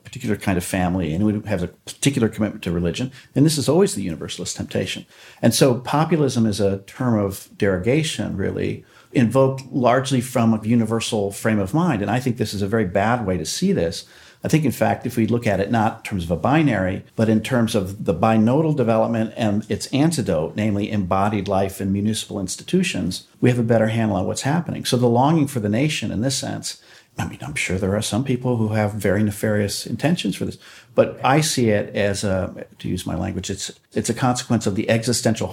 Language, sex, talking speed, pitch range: English, male, 215 wpm, 100-120 Hz